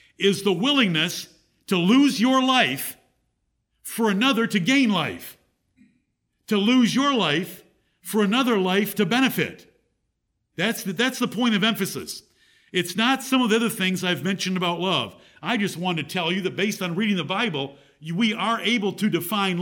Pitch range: 170-220 Hz